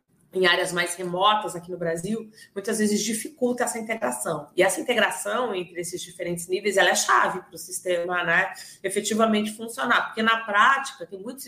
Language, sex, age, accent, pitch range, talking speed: Portuguese, female, 30-49, Brazilian, 180-230 Hz, 175 wpm